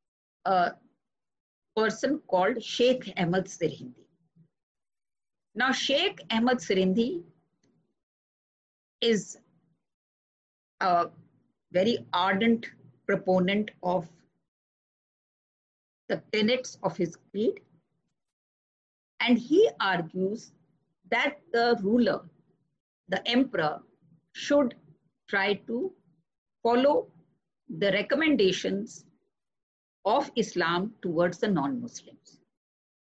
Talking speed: 75 wpm